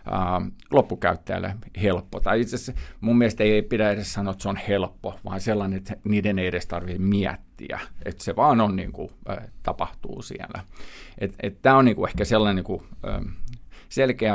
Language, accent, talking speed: Finnish, native, 165 wpm